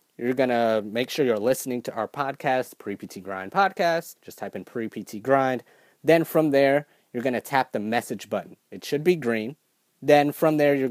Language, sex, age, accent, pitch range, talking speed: English, male, 30-49, American, 110-145 Hz, 200 wpm